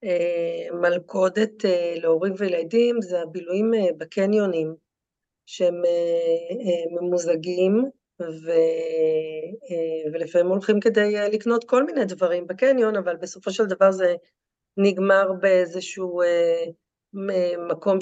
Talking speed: 105 wpm